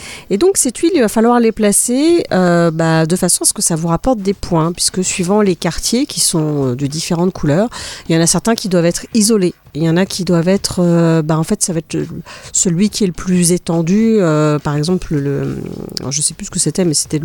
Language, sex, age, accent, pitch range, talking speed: French, female, 40-59, French, 165-205 Hz, 250 wpm